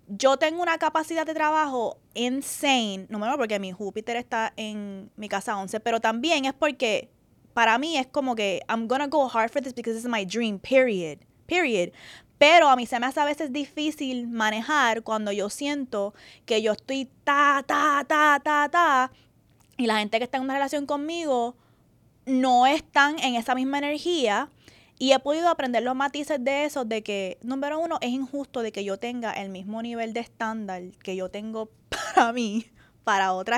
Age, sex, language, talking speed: 20-39, female, Spanish, 190 wpm